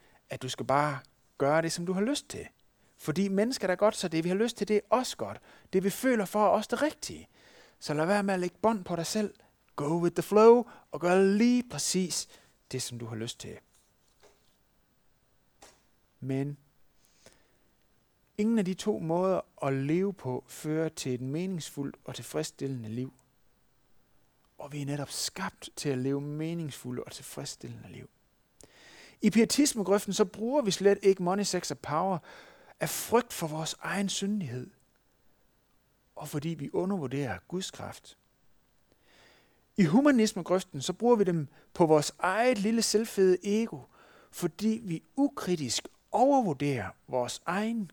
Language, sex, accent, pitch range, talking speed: Danish, male, native, 145-205 Hz, 160 wpm